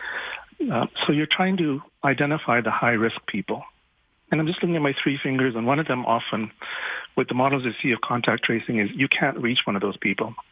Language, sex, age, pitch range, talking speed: English, male, 50-69, 115-150 Hz, 215 wpm